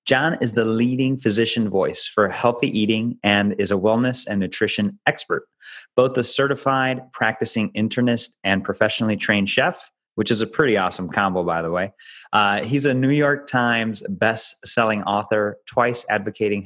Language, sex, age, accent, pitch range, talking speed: English, male, 30-49, American, 100-120 Hz, 160 wpm